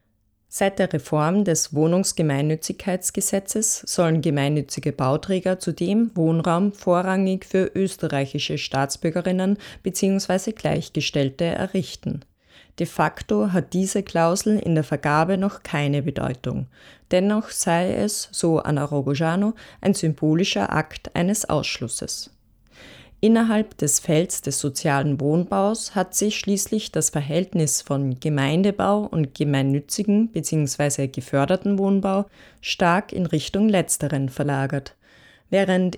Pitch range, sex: 145-195 Hz, female